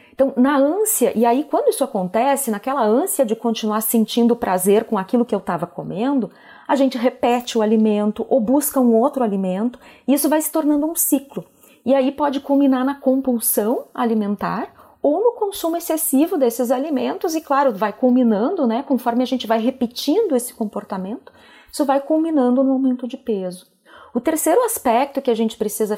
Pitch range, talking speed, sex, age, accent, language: 210-275 Hz, 175 wpm, female, 30-49, Brazilian, Portuguese